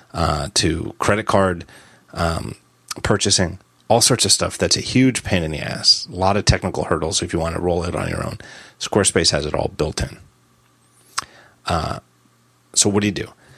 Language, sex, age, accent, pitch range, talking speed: English, male, 30-49, American, 85-110 Hz, 190 wpm